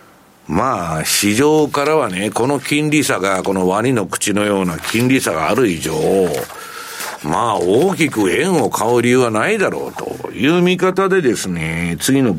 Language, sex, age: Japanese, male, 60-79